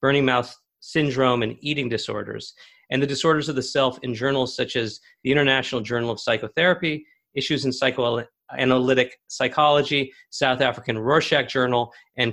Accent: American